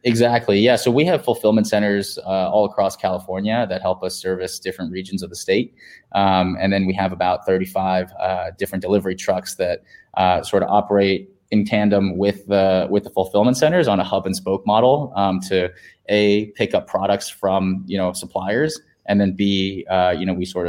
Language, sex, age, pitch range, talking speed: English, male, 20-39, 95-100 Hz, 195 wpm